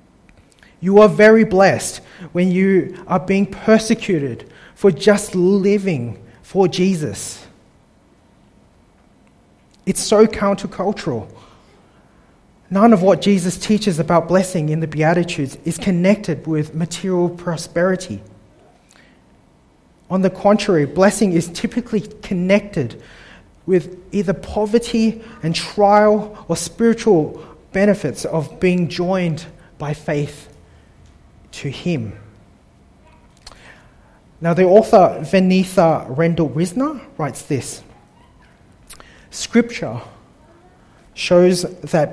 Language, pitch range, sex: English, 160-200 Hz, male